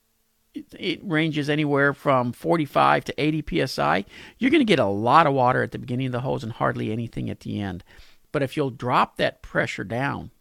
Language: English